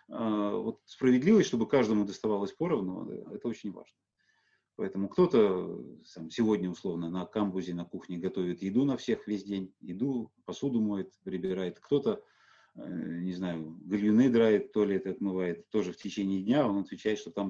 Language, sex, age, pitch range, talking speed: Russian, male, 30-49, 95-130 Hz, 150 wpm